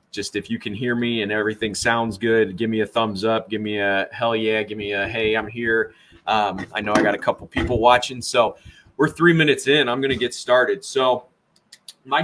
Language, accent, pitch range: English, American, 105-135 Hz